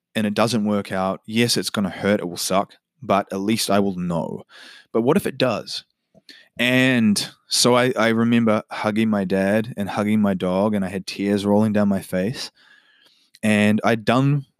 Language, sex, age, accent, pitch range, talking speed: English, male, 20-39, Australian, 105-130 Hz, 195 wpm